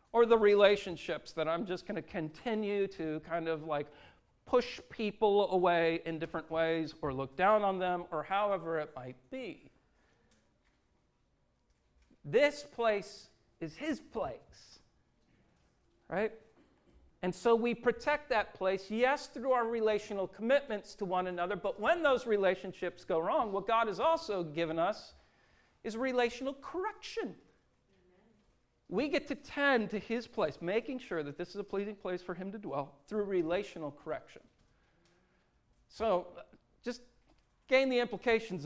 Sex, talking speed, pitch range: male, 140 wpm, 170-235 Hz